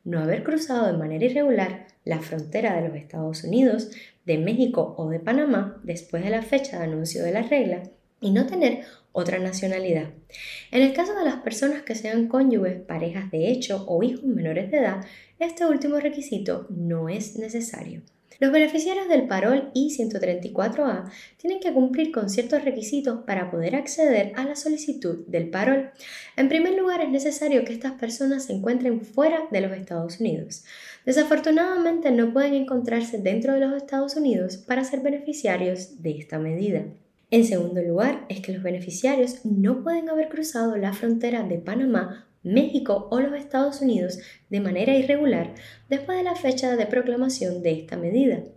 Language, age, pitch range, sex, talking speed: English, 10-29, 185-275 Hz, female, 165 wpm